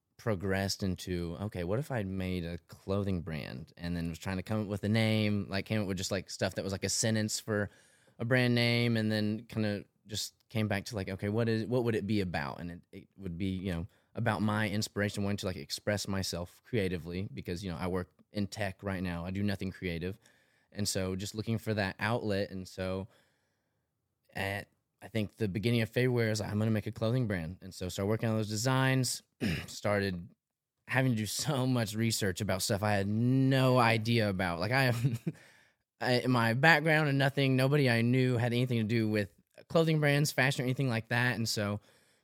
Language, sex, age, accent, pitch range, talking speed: English, male, 20-39, American, 95-115 Hz, 215 wpm